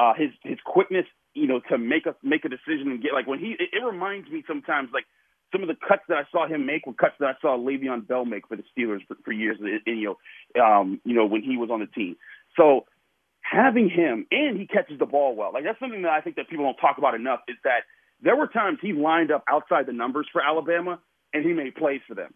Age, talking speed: 30-49, 270 wpm